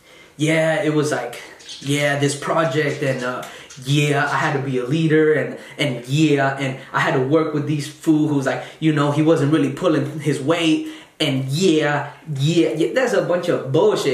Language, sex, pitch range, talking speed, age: English, male, 145-185 Hz, 200 wpm, 20-39